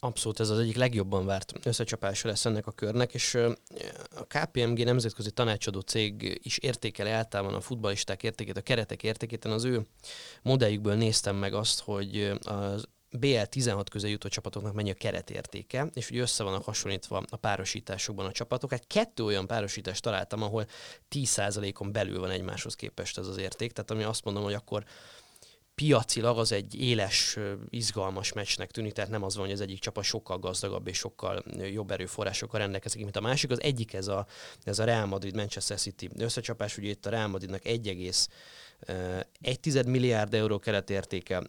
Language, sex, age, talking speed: Hungarian, male, 20-39, 165 wpm